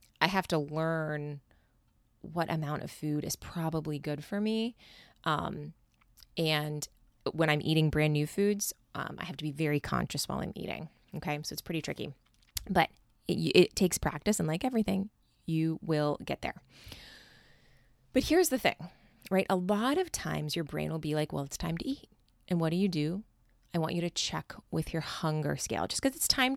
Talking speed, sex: 190 wpm, female